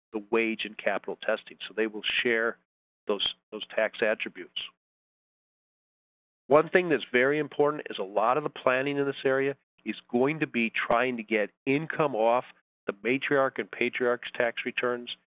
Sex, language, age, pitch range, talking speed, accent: male, English, 40-59, 110-135 Hz, 165 wpm, American